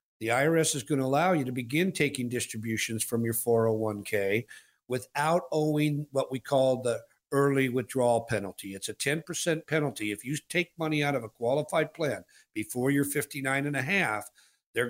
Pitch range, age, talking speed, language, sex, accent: 115-145 Hz, 50-69, 175 wpm, English, male, American